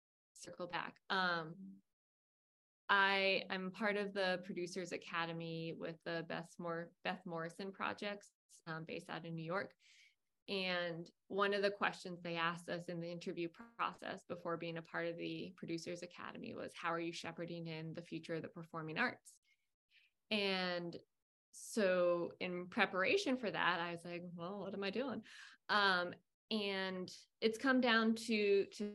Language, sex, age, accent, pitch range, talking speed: English, female, 20-39, American, 170-200 Hz, 155 wpm